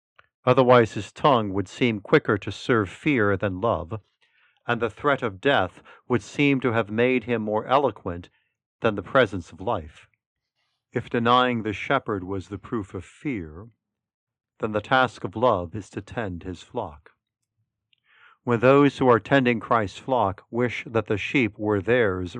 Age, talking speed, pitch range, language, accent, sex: 50-69, 165 wpm, 100-125 Hz, English, American, male